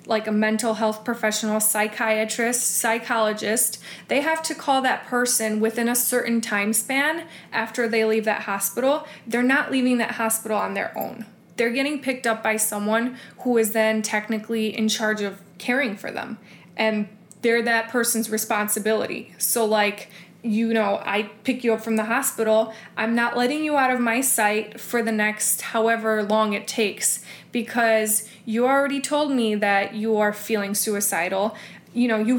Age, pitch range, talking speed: 20-39, 210-235 Hz, 170 wpm